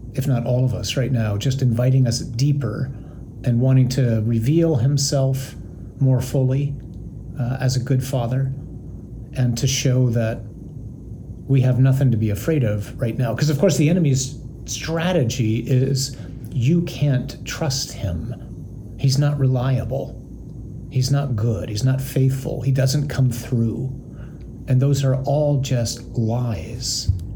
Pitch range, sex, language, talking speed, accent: 120-140 Hz, male, English, 145 wpm, American